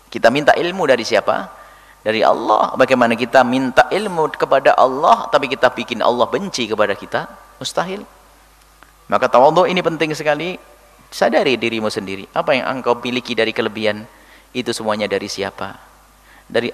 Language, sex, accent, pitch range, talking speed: Indonesian, male, native, 110-125 Hz, 145 wpm